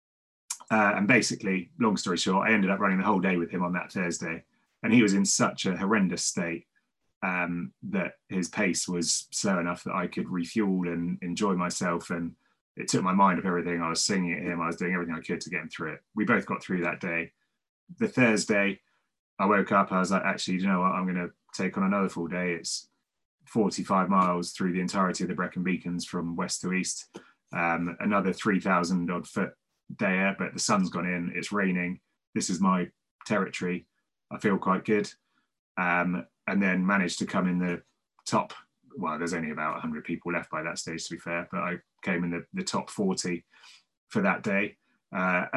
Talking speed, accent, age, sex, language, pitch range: 210 wpm, British, 20-39, male, English, 85-95 Hz